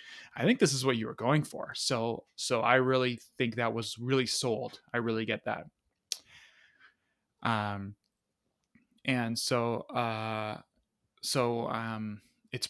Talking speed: 135 wpm